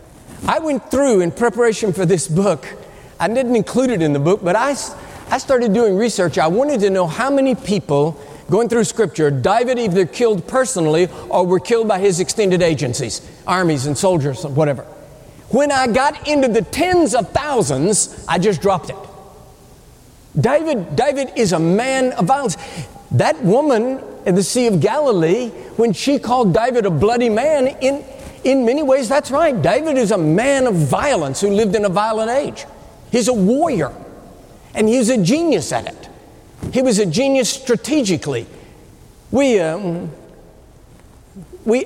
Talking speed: 165 wpm